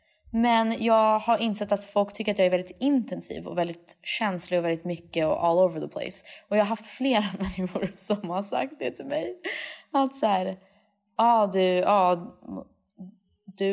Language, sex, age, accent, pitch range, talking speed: English, female, 20-39, Swedish, 175-225 Hz, 190 wpm